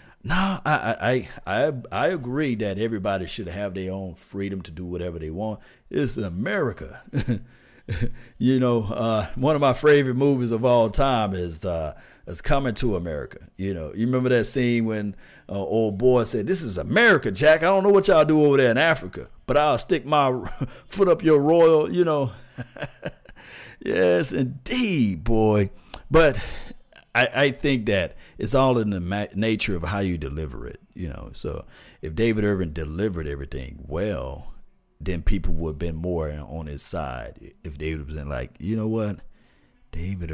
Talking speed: 175 wpm